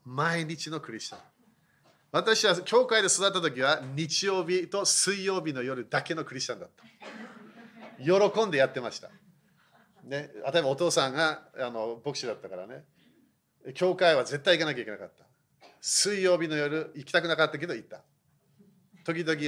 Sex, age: male, 40-59